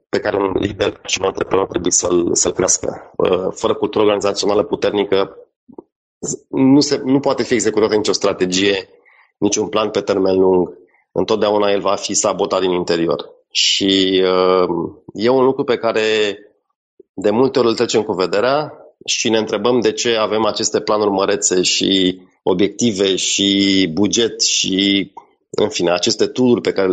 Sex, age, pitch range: male, 30-49, 95-135 Hz